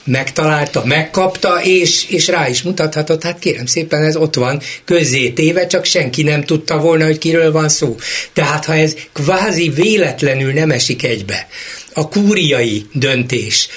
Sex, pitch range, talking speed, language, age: male, 130-170 Hz, 150 wpm, Hungarian, 60-79